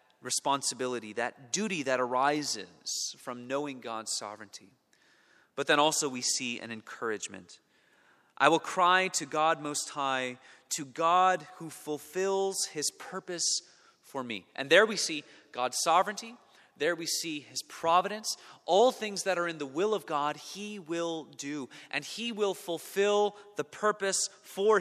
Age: 30-49